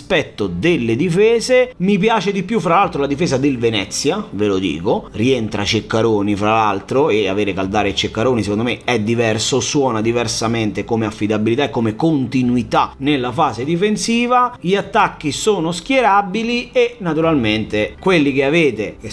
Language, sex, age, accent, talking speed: Italian, male, 30-49, native, 155 wpm